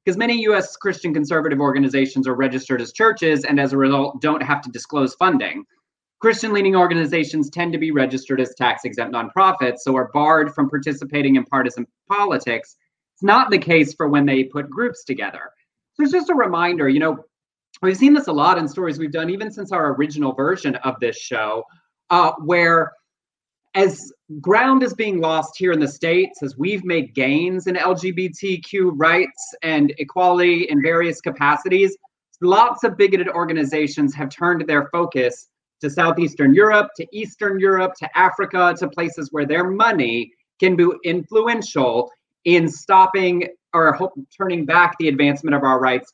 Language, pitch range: English, 140-190 Hz